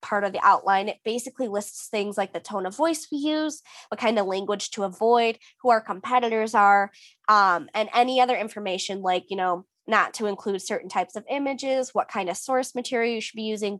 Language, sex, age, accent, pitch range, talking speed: English, female, 20-39, American, 200-245 Hz, 215 wpm